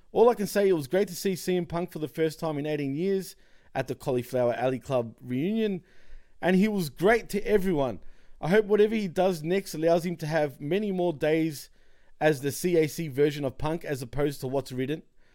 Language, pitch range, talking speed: English, 150-190 Hz, 210 wpm